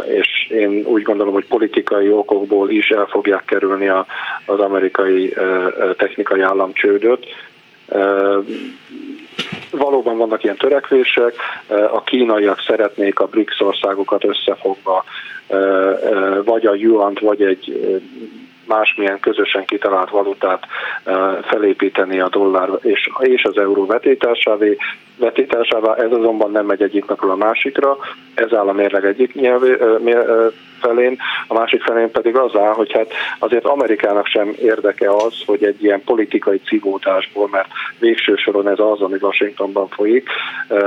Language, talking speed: Hungarian, 120 wpm